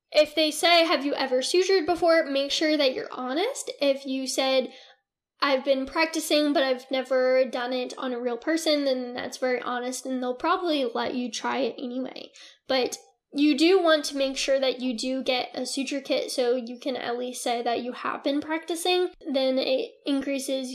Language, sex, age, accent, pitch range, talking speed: English, female, 10-29, American, 255-295 Hz, 195 wpm